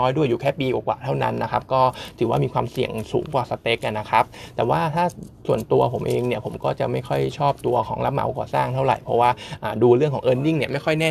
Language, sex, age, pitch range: Thai, male, 20-39, 120-145 Hz